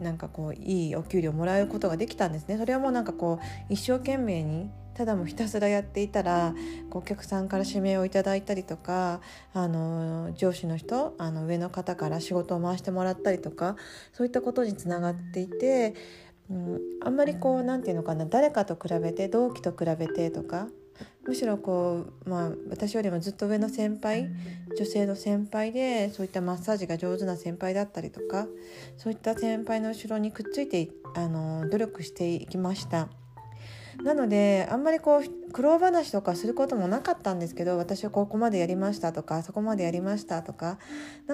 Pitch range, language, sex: 165-220 Hz, Japanese, female